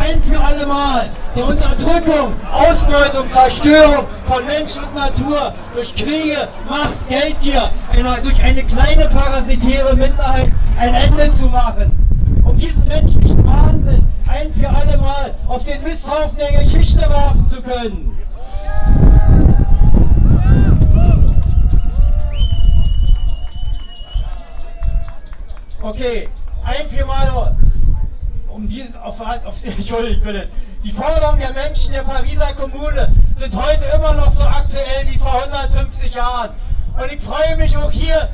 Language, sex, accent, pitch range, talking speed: German, male, German, 245-290 Hz, 120 wpm